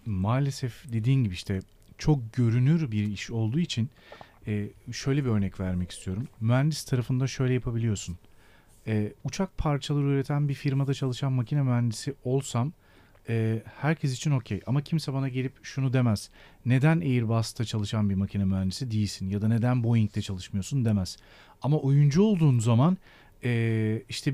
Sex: male